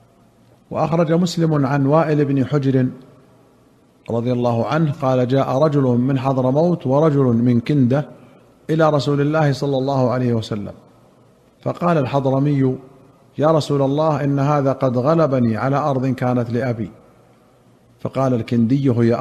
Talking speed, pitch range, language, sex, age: 125 wpm, 125-150 Hz, Arabic, male, 40-59